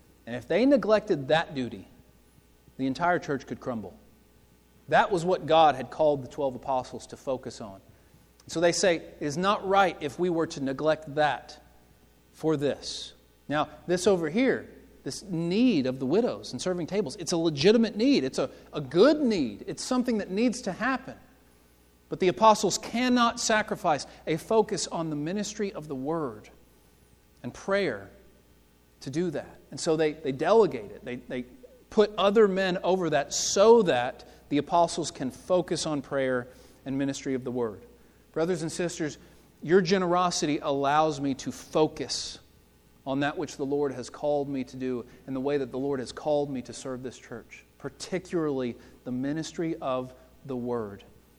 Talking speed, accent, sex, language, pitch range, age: 170 wpm, American, male, English, 125-180 Hz, 40-59